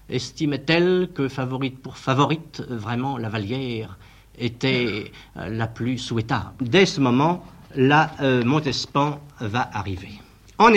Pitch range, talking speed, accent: 110-160 Hz, 115 wpm, French